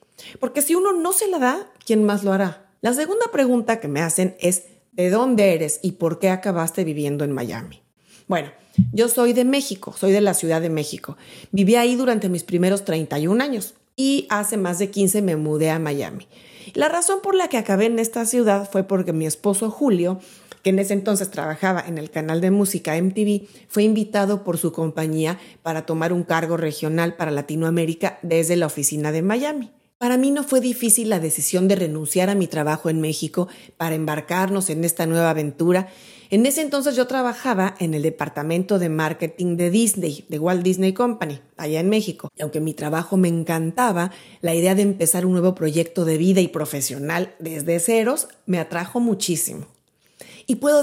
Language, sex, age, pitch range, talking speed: Spanish, female, 30-49, 165-220 Hz, 190 wpm